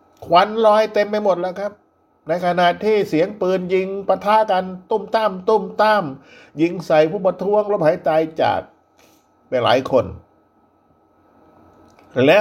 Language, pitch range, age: Thai, 125-180 Hz, 60-79